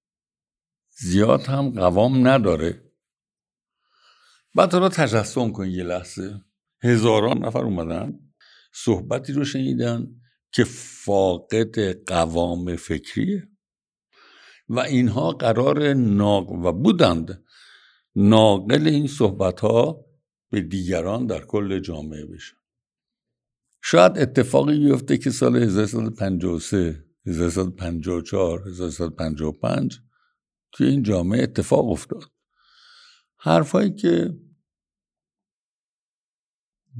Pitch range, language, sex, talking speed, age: 95-125 Hz, Persian, male, 85 wpm, 60-79